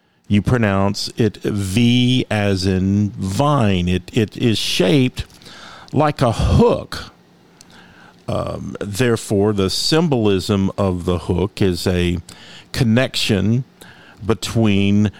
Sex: male